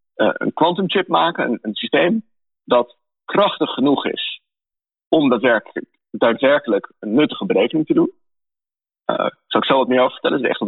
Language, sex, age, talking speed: Dutch, male, 40-59, 170 wpm